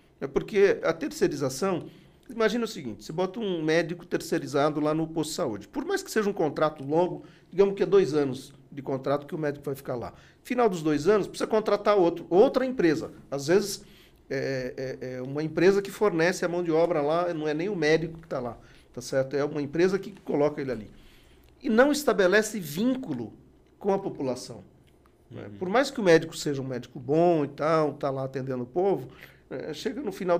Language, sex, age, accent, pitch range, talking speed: Portuguese, male, 40-59, Brazilian, 140-205 Hz, 195 wpm